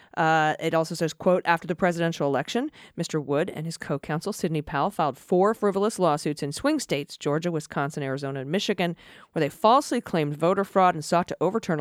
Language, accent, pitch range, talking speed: English, American, 165-215 Hz, 195 wpm